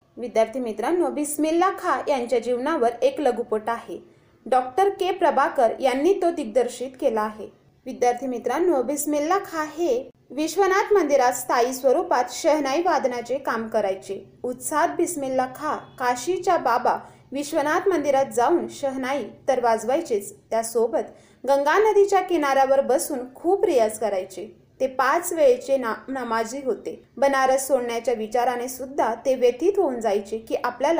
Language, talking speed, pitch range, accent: Marathi, 95 wpm, 245-315 Hz, native